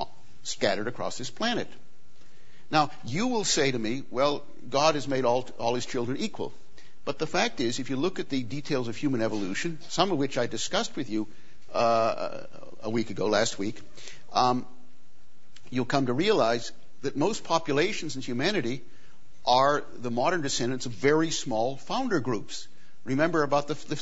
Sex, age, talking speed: male, 60-79, 165 wpm